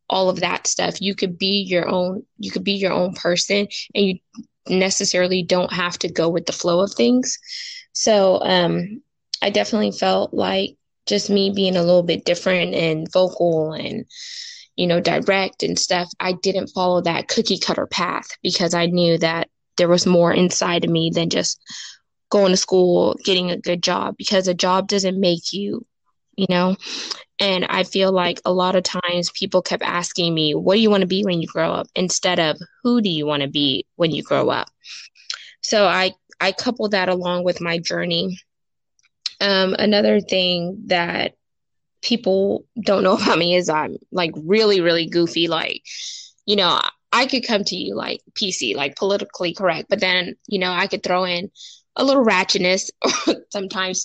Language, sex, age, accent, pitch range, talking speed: English, female, 10-29, American, 175-200 Hz, 185 wpm